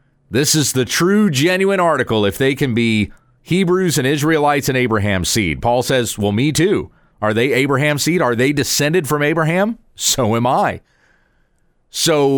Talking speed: 165 wpm